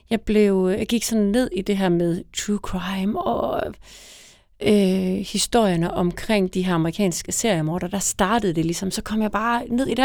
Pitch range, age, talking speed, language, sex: 180-220 Hz, 30-49, 185 wpm, Danish, female